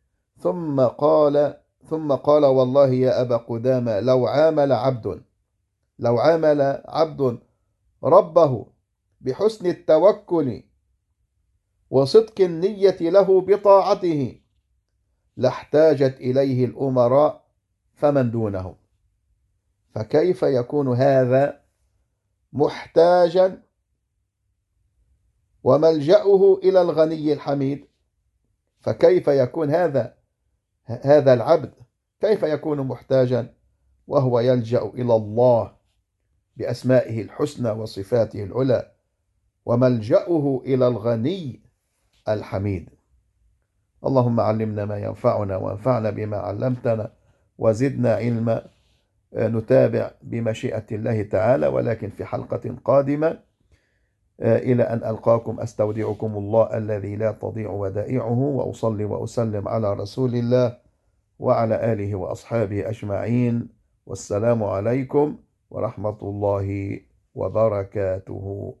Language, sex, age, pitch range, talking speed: English, male, 50-69, 100-135 Hz, 80 wpm